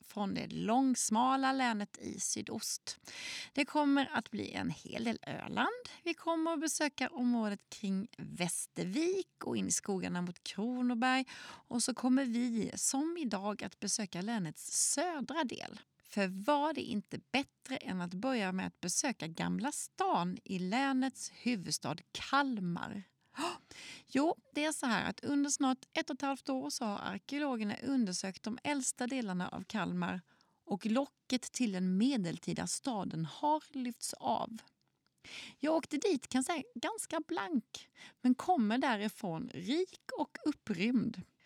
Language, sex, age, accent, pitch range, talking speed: Swedish, female, 30-49, native, 210-285 Hz, 145 wpm